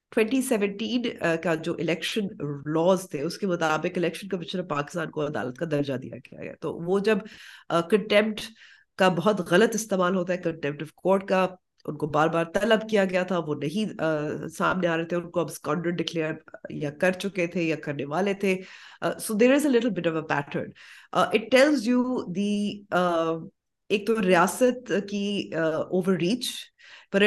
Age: 30-49